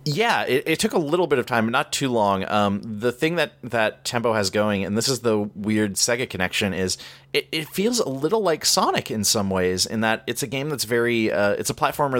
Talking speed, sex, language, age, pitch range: 245 wpm, male, English, 30-49, 95-115 Hz